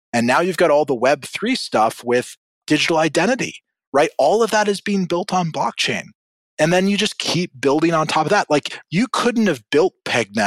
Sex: male